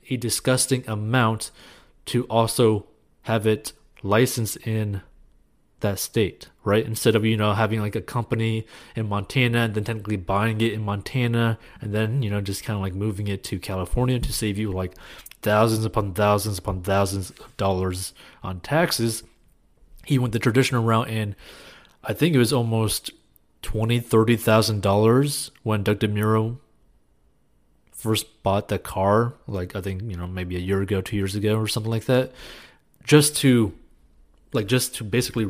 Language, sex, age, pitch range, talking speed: English, male, 20-39, 100-120 Hz, 165 wpm